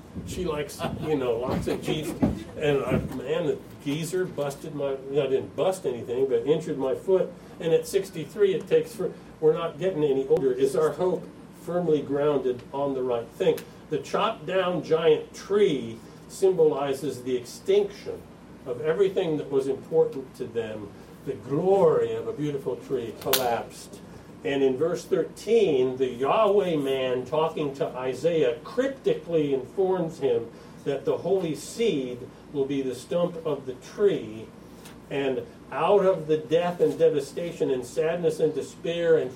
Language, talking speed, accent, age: English, 150 wpm, American, 50-69